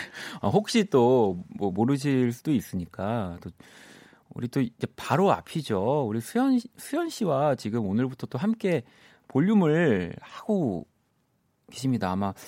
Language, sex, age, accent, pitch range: Korean, male, 40-59, native, 95-140 Hz